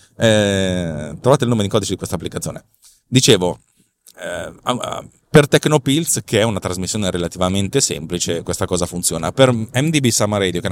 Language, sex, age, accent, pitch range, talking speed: Italian, male, 30-49, native, 95-115 Hz, 150 wpm